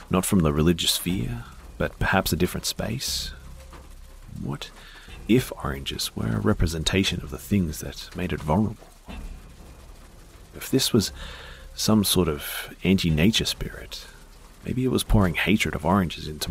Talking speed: 140 wpm